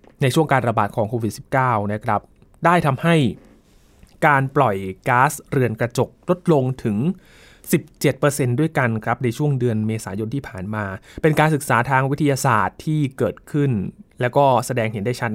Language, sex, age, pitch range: Thai, male, 20-39, 120-155 Hz